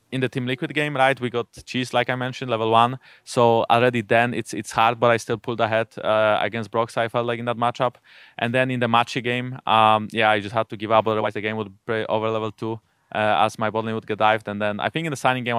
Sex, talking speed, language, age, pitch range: male, 275 wpm, English, 20-39, 110-130 Hz